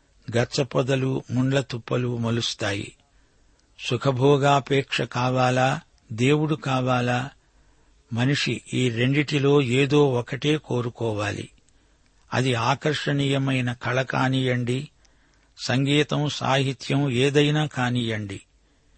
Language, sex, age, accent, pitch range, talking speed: Telugu, male, 60-79, native, 120-140 Hz, 70 wpm